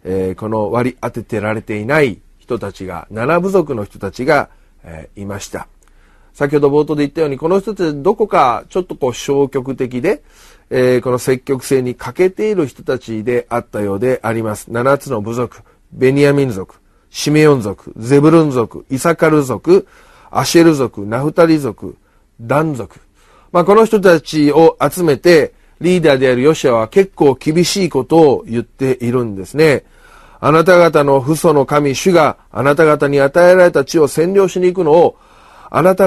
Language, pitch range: Japanese, 120-170 Hz